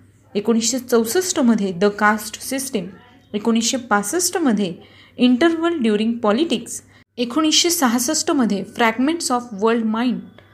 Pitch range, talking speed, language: 210-260 Hz, 90 wpm, Marathi